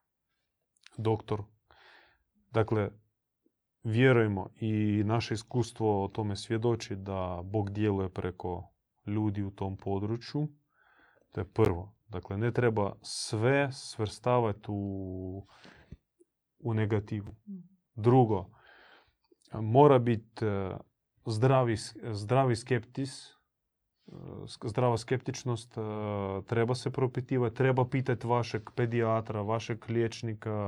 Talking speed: 90 wpm